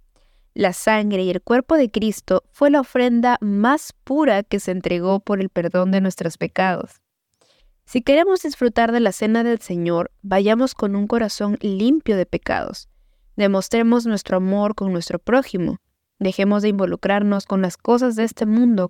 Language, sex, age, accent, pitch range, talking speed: Spanish, female, 20-39, Mexican, 190-240 Hz, 160 wpm